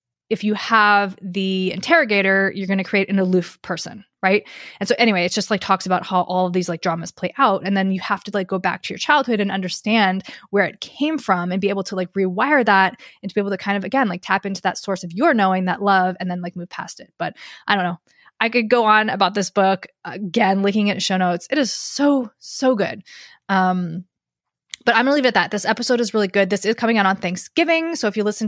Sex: female